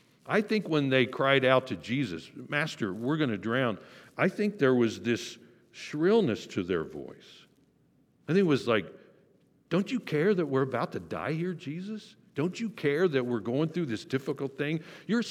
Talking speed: 190 wpm